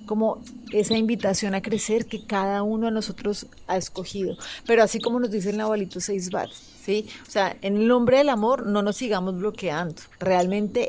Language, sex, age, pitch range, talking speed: Spanish, female, 30-49, 190-225 Hz, 180 wpm